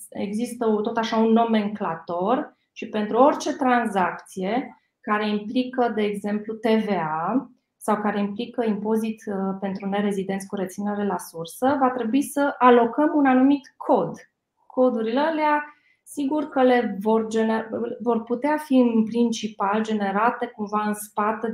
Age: 20-39